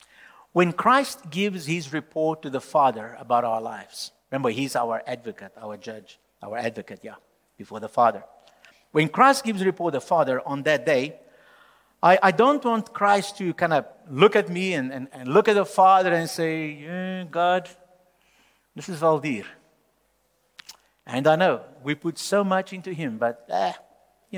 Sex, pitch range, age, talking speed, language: male, 130-185 Hz, 50-69, 175 wpm, English